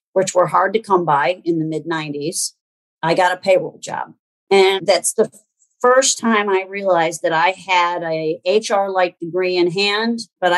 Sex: female